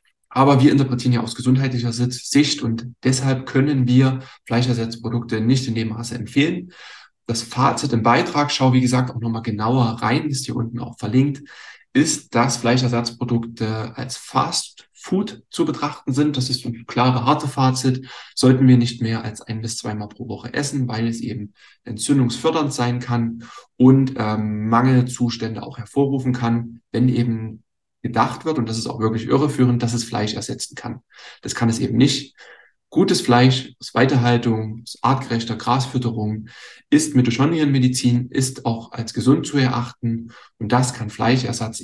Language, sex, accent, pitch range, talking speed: German, male, German, 115-130 Hz, 160 wpm